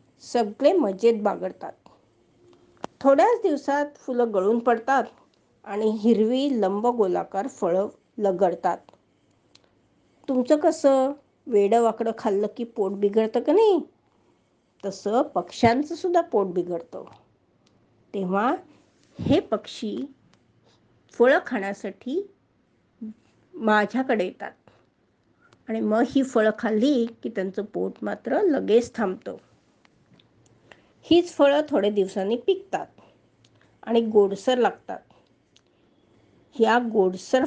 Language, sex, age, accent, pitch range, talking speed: Marathi, female, 50-69, native, 200-265 Hz, 90 wpm